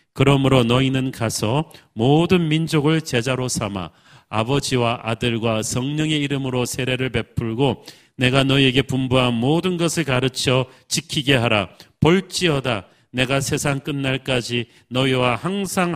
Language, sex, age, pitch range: Korean, male, 40-59, 130-160 Hz